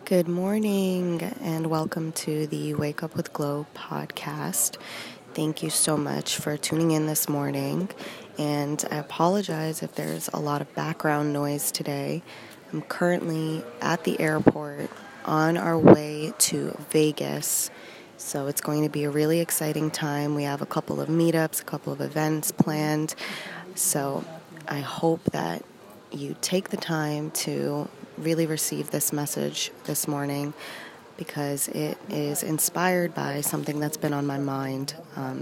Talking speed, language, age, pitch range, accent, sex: 150 wpm, English, 20-39, 145-165 Hz, American, female